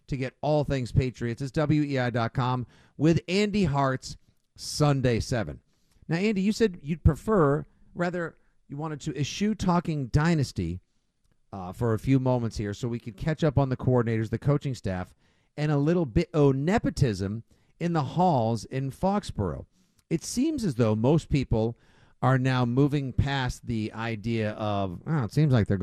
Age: 50-69